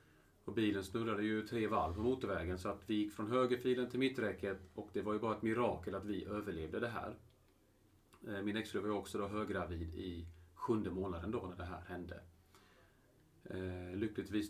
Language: Swedish